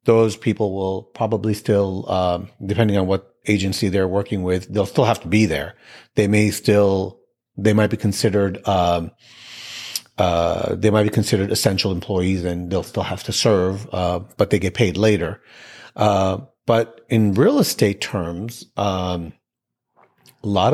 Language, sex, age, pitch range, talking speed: English, male, 40-59, 95-115 Hz, 155 wpm